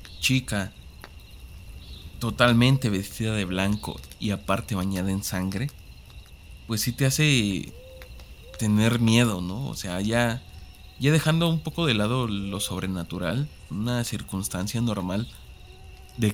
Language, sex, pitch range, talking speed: Spanish, male, 95-120 Hz, 120 wpm